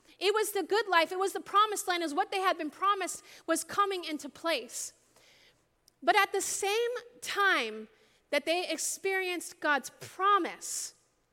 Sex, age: female, 30-49